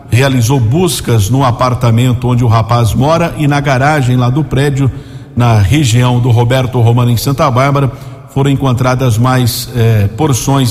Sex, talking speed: male, 150 wpm